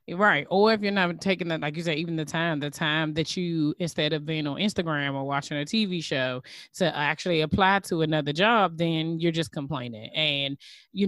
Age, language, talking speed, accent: 20-39, English, 210 wpm, American